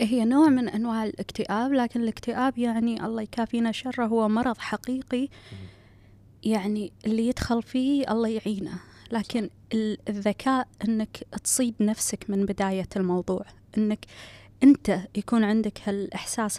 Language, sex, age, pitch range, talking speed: Arabic, female, 20-39, 210-265 Hz, 120 wpm